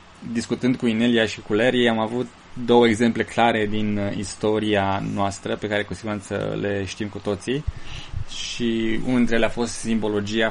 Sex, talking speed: male, 165 wpm